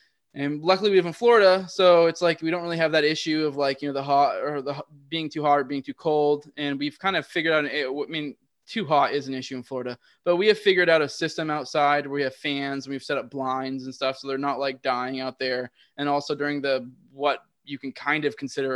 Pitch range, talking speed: 135-160 Hz, 260 wpm